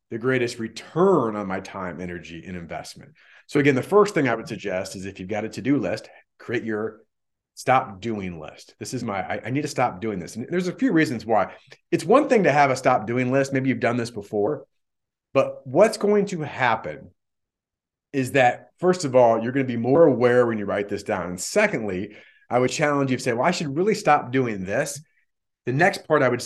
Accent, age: American, 30-49